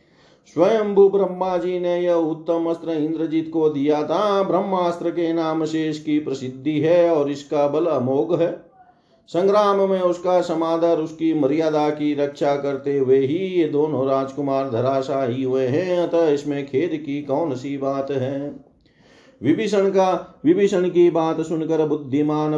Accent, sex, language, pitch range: native, male, Hindi, 135-160 Hz